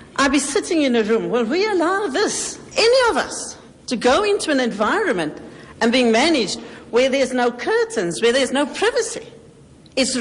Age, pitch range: 60-79, 160-225 Hz